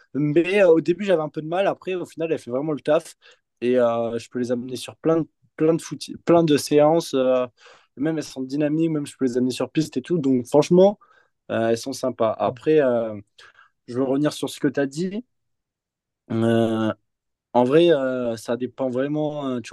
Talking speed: 220 wpm